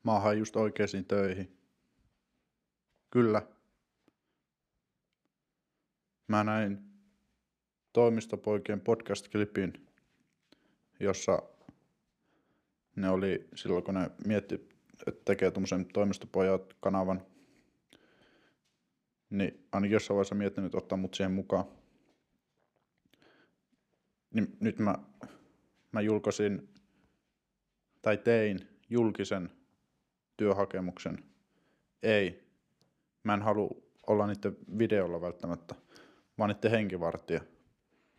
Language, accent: Finnish, native